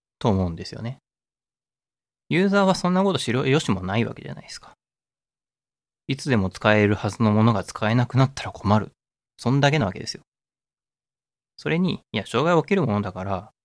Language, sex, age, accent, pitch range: Japanese, male, 20-39, native, 95-130 Hz